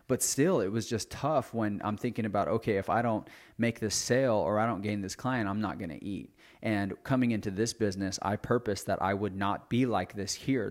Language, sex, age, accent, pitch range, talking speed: English, male, 30-49, American, 100-115 Hz, 240 wpm